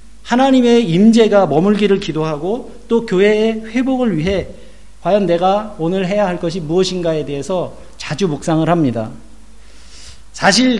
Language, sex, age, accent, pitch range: Korean, male, 40-59, native, 160-230 Hz